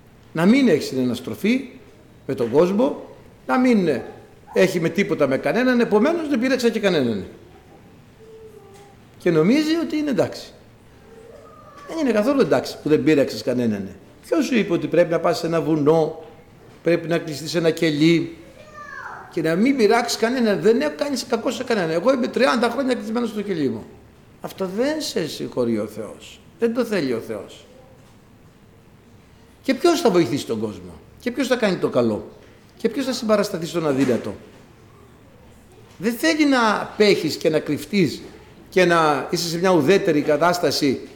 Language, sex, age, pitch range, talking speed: Greek, male, 60-79, 160-260 Hz, 160 wpm